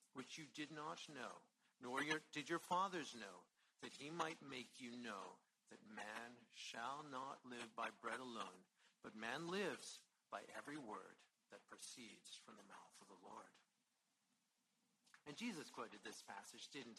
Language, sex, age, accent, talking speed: English, male, 50-69, American, 155 wpm